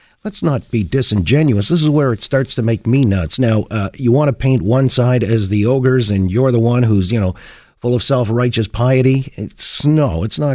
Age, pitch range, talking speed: 50-69, 110-140 Hz, 215 wpm